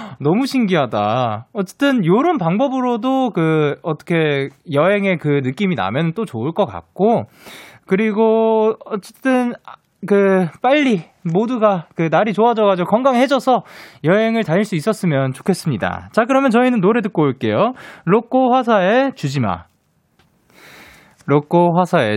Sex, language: male, Korean